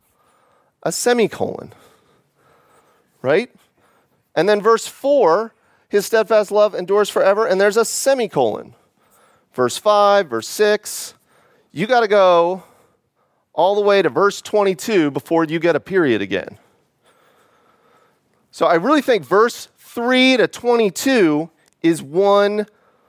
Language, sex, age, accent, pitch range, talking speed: English, male, 30-49, American, 145-210 Hz, 115 wpm